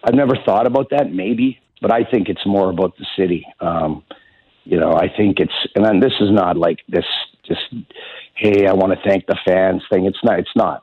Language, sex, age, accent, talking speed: English, male, 50-69, American, 220 wpm